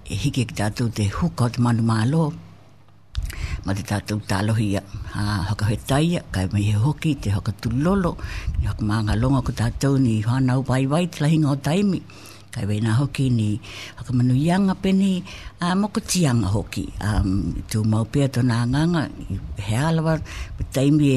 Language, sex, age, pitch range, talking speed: English, female, 60-79, 105-140 Hz, 150 wpm